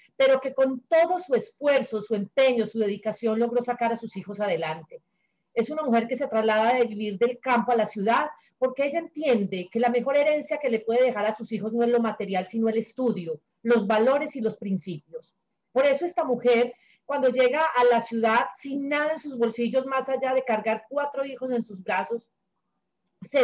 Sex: female